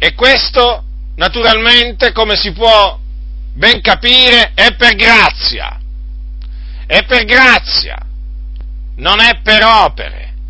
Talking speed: 105 wpm